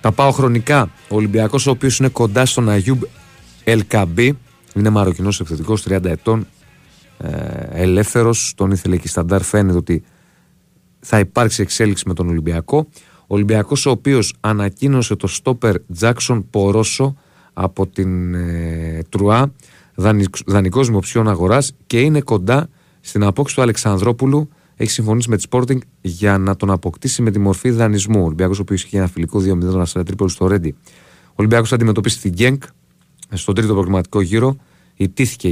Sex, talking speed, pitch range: male, 150 wpm, 95-120 Hz